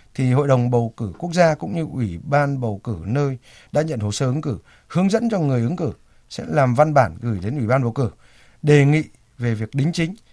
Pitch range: 115-150 Hz